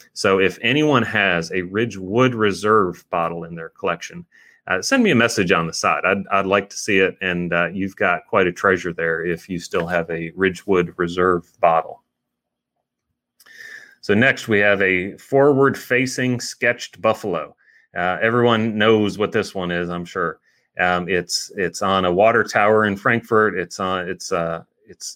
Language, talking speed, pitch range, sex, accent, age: English, 170 wpm, 90-110 Hz, male, American, 30-49